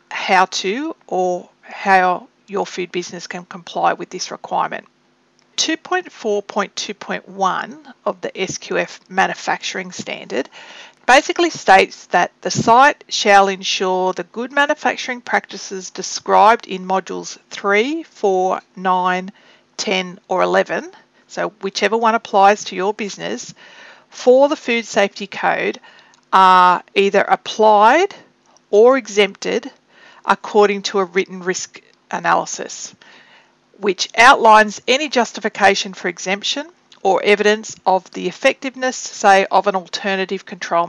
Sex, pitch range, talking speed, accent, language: female, 185-245 Hz, 115 wpm, Australian, English